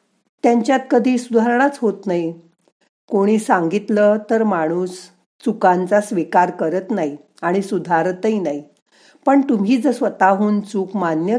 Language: Marathi